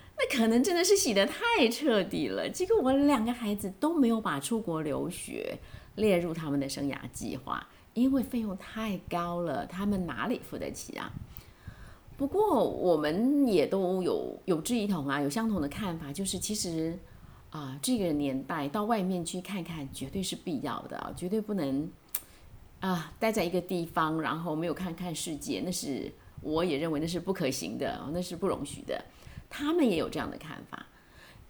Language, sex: Chinese, female